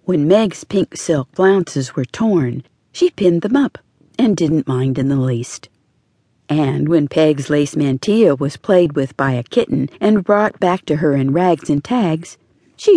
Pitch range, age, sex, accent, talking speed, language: 140-200 Hz, 50-69, female, American, 175 wpm, English